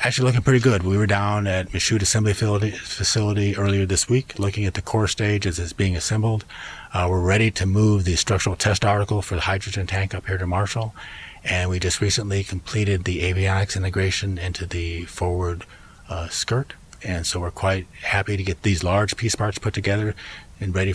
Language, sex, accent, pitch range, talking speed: English, male, American, 85-100 Hz, 195 wpm